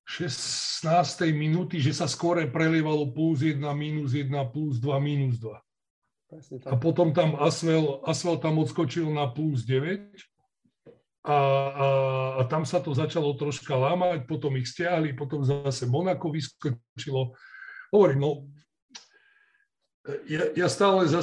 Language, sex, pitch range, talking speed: Slovak, male, 130-155 Hz, 125 wpm